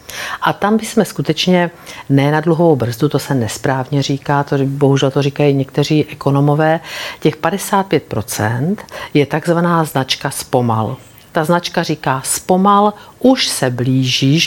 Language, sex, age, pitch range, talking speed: Czech, female, 50-69, 135-165 Hz, 130 wpm